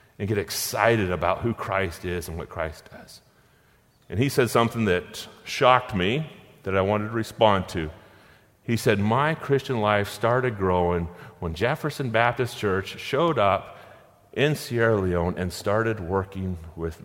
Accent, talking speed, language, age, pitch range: American, 155 wpm, English, 40-59, 105-140 Hz